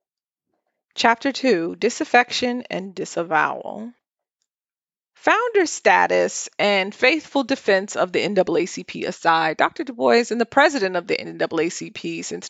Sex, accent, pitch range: female, American, 190-265 Hz